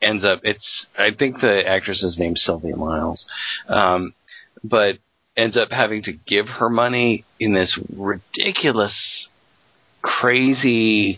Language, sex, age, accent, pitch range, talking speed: English, male, 40-59, American, 95-120 Hz, 130 wpm